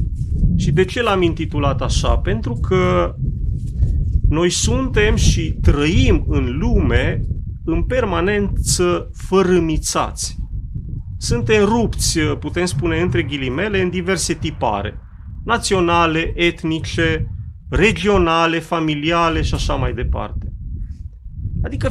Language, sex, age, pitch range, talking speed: Romanian, male, 30-49, 125-185 Hz, 95 wpm